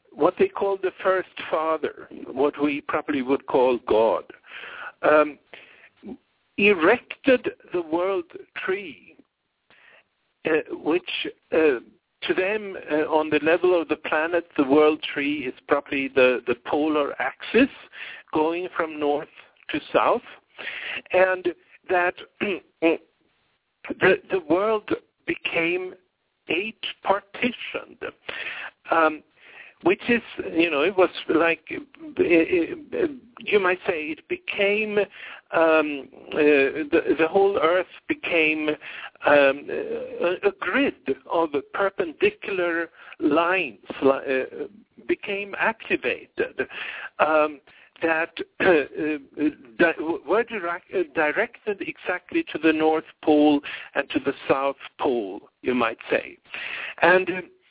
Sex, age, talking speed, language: male, 60-79, 105 wpm, English